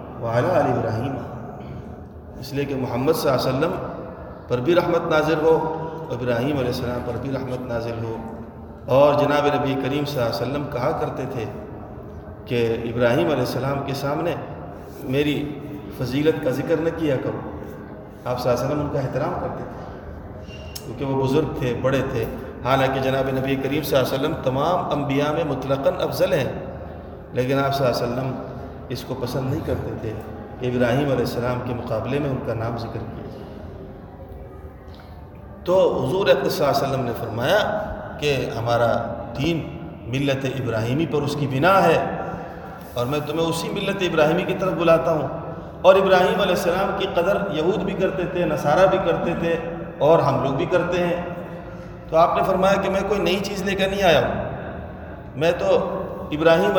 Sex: male